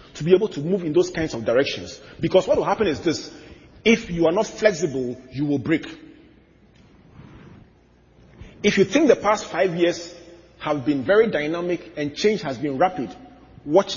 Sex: male